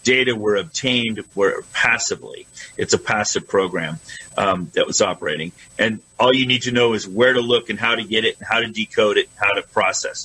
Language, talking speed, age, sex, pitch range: English, 215 wpm, 40-59, male, 110-135 Hz